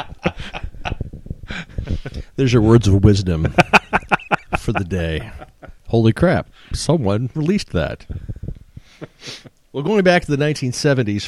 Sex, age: male, 40-59